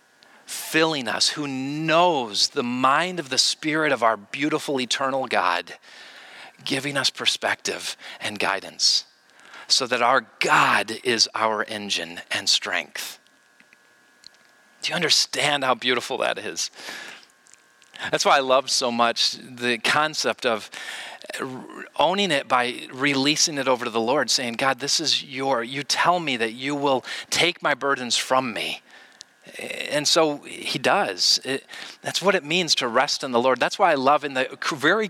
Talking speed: 150 wpm